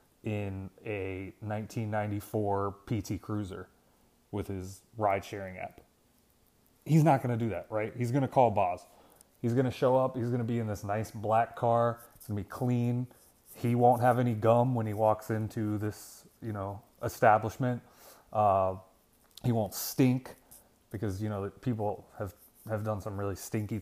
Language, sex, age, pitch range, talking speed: English, male, 30-49, 105-130 Hz, 170 wpm